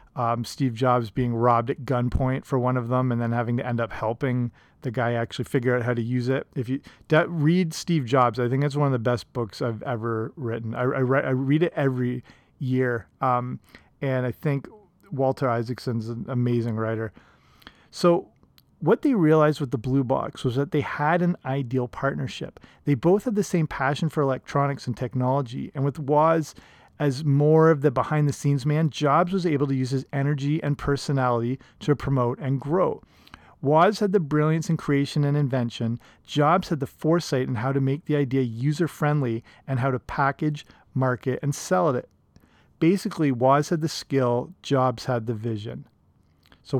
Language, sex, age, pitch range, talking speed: English, male, 30-49, 125-150 Hz, 190 wpm